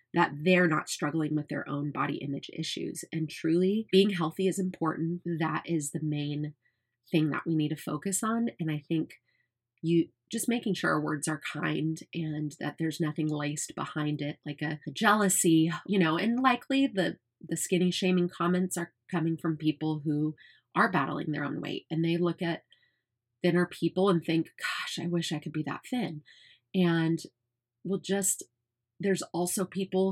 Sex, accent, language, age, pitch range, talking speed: female, American, English, 30-49, 155-190 Hz, 180 wpm